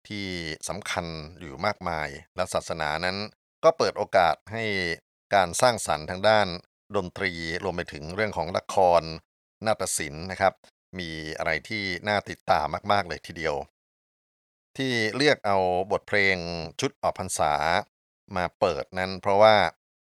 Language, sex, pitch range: Thai, male, 85-105 Hz